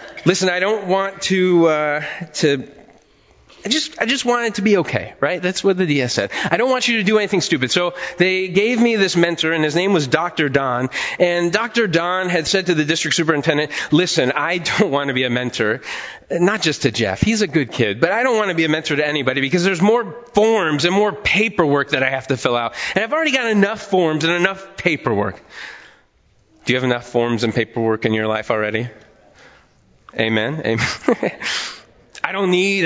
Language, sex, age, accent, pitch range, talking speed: English, male, 30-49, American, 115-180 Hz, 210 wpm